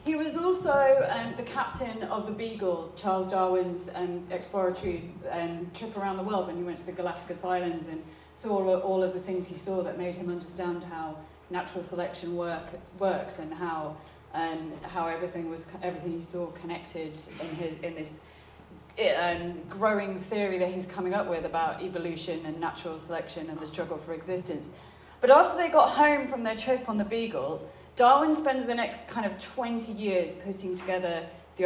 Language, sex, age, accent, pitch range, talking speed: English, female, 30-49, British, 170-205 Hz, 175 wpm